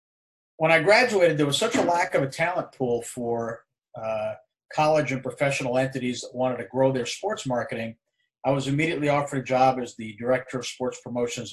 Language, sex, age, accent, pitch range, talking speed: English, male, 40-59, American, 120-145 Hz, 195 wpm